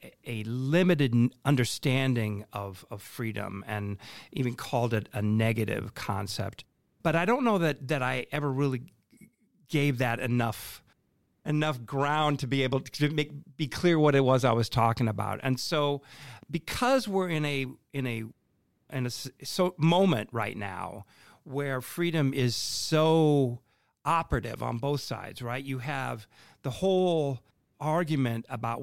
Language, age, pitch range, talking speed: English, 50-69, 110-145 Hz, 145 wpm